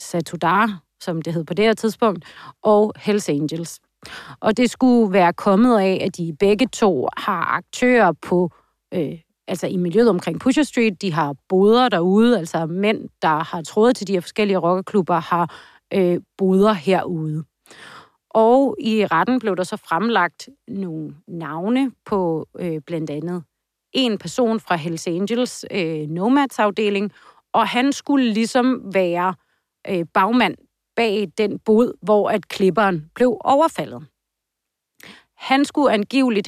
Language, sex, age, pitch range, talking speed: Danish, female, 30-49, 180-230 Hz, 140 wpm